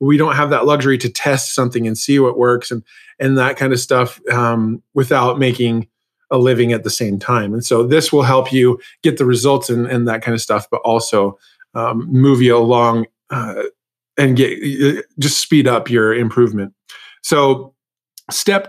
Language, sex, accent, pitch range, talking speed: English, male, American, 120-145 Hz, 185 wpm